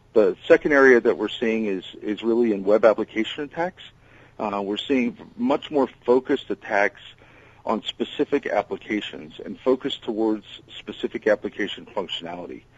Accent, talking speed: American, 135 wpm